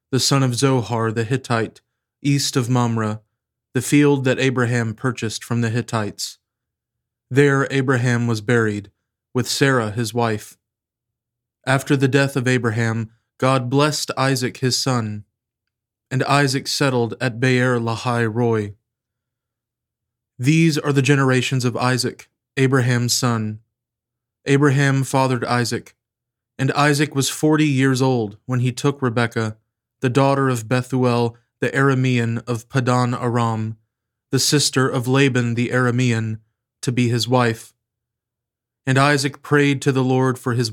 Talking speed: 135 wpm